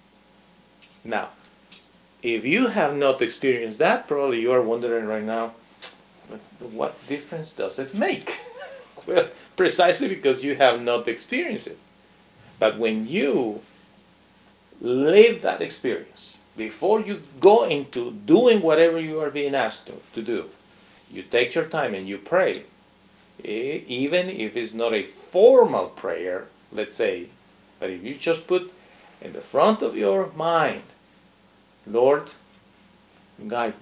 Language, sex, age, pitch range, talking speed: English, male, 50-69, 125-210 Hz, 130 wpm